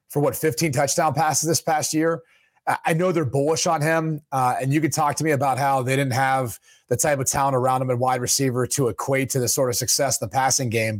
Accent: American